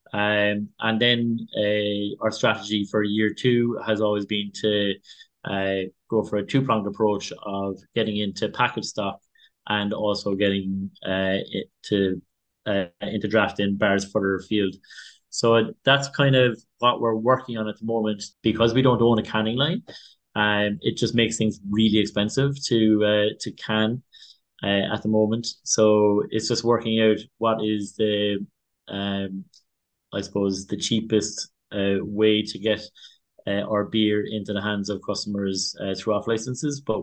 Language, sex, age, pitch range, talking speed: English, male, 20-39, 100-110 Hz, 160 wpm